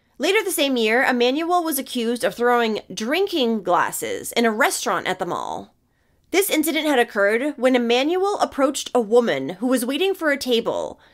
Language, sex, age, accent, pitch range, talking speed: English, female, 20-39, American, 240-320 Hz, 170 wpm